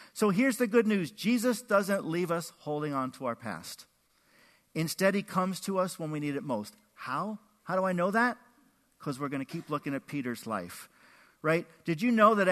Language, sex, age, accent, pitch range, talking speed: English, male, 50-69, American, 155-230 Hz, 210 wpm